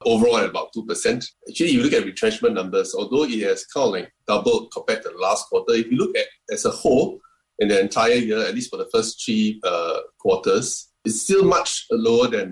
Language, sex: English, male